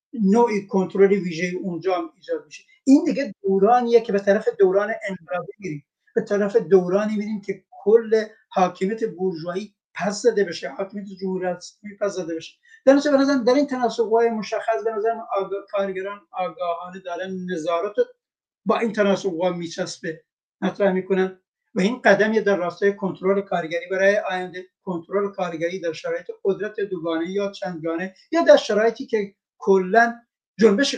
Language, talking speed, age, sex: Persian, 145 wpm, 60-79, male